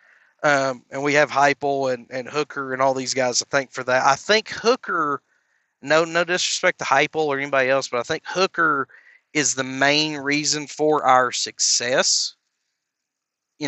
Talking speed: 170 wpm